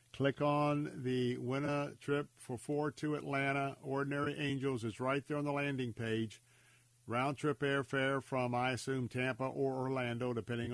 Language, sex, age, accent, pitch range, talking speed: English, male, 50-69, American, 120-140 Hz, 160 wpm